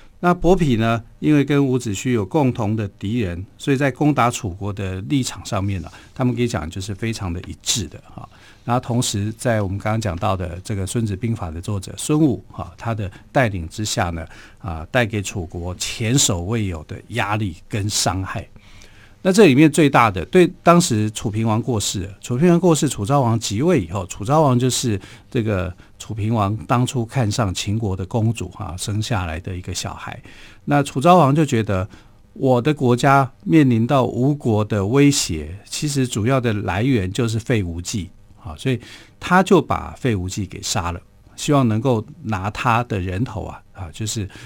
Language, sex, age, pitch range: Chinese, male, 50-69, 100-125 Hz